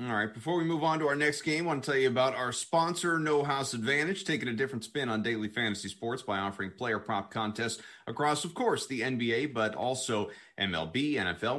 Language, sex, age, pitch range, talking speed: English, male, 30-49, 110-140 Hz, 225 wpm